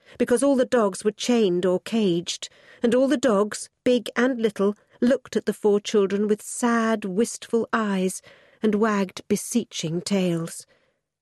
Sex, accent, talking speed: female, British, 150 wpm